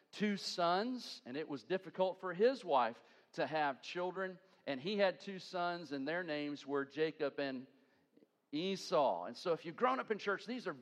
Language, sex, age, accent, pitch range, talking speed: English, male, 50-69, American, 160-215 Hz, 190 wpm